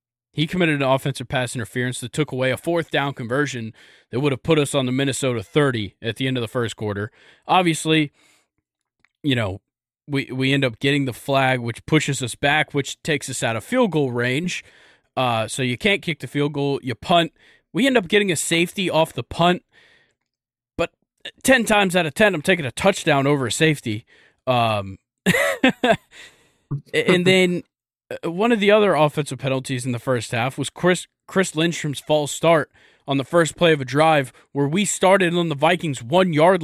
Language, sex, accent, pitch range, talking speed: English, male, American, 130-170 Hz, 190 wpm